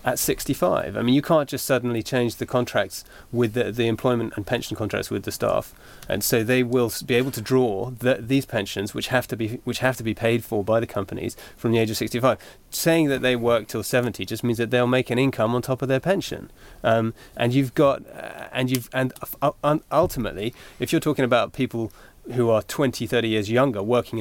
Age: 30-49